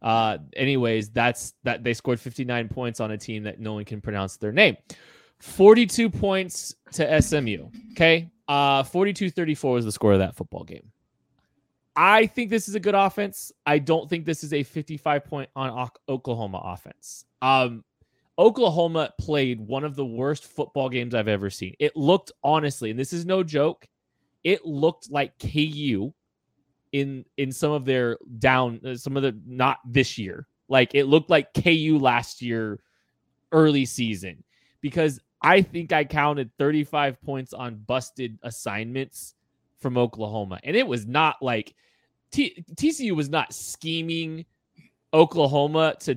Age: 20-39